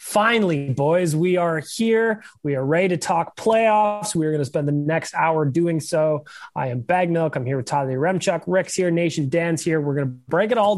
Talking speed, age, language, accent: 230 wpm, 20-39, English, American